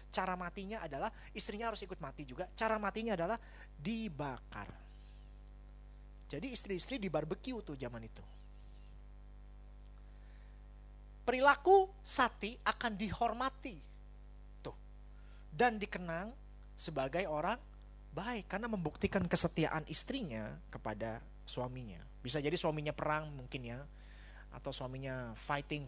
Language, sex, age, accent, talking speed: Indonesian, male, 30-49, native, 100 wpm